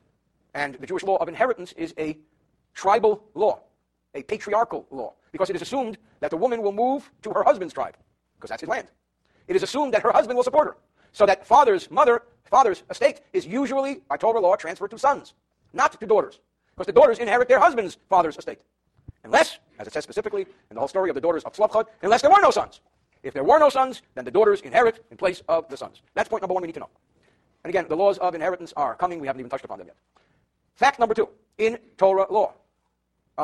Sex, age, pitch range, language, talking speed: male, 50-69, 190-280 Hz, English, 230 wpm